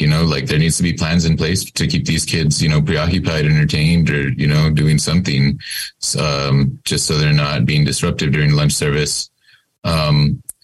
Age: 20-39